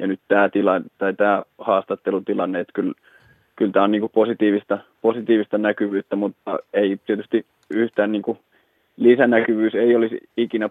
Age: 20-39